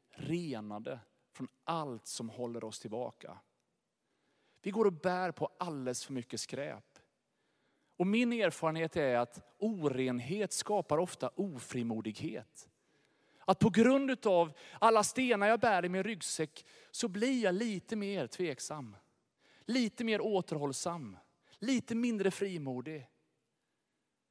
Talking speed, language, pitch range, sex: 120 wpm, Swedish, 155-260 Hz, male